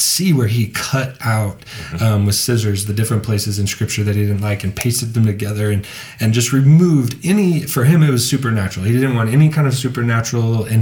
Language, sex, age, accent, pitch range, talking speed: English, male, 20-39, American, 105-125 Hz, 215 wpm